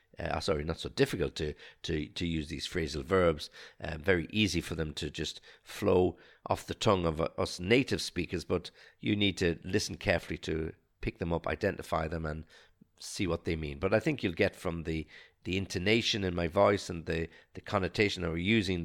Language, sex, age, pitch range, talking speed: English, male, 50-69, 80-95 Hz, 205 wpm